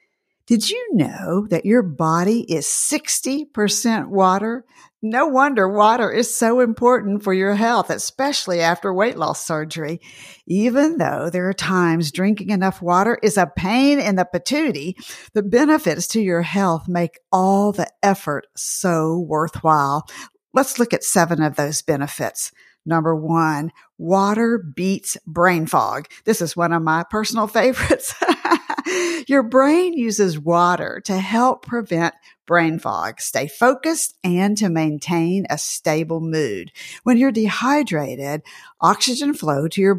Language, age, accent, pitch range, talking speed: English, 50-69, American, 165-240 Hz, 140 wpm